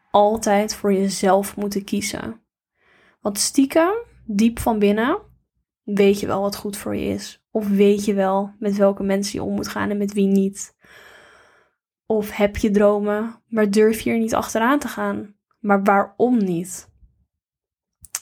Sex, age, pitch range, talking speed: female, 10-29, 200-225 Hz, 160 wpm